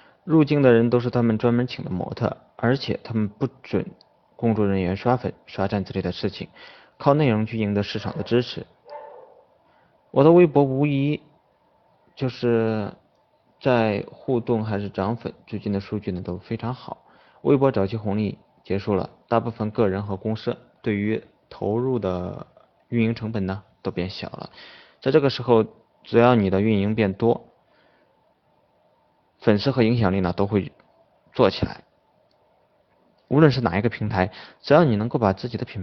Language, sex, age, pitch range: Chinese, male, 20-39, 100-125 Hz